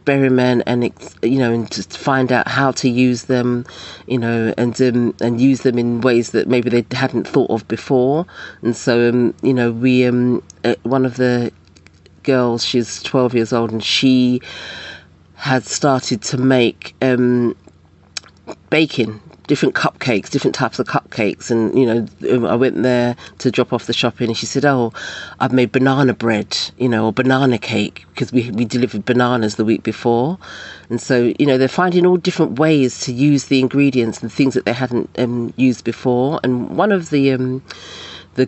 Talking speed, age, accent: 180 wpm, 40-59, British